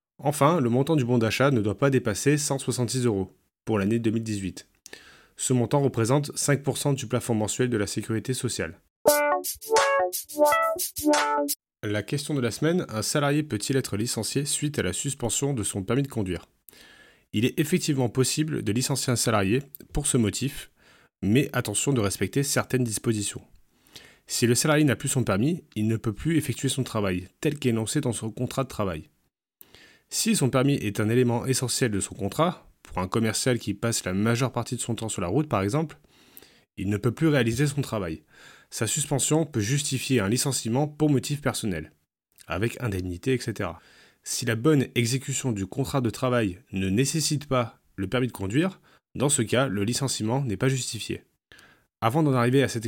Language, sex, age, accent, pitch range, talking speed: French, male, 30-49, French, 110-140 Hz, 175 wpm